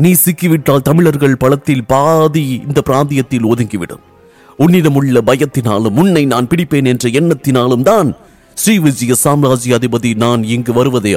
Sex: male